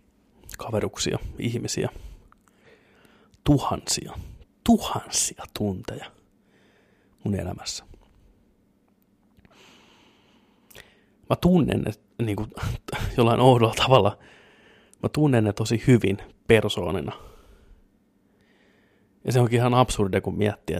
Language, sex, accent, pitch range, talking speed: Finnish, male, native, 95-115 Hz, 80 wpm